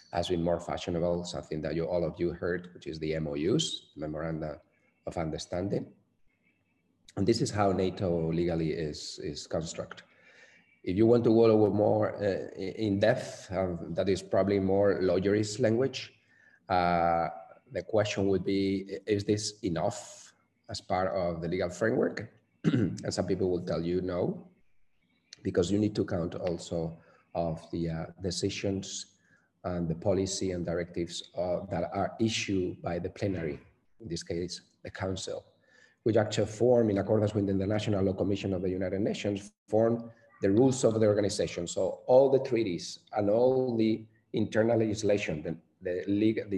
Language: English